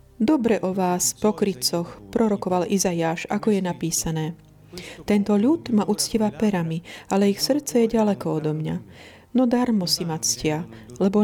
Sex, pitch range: female, 160-225 Hz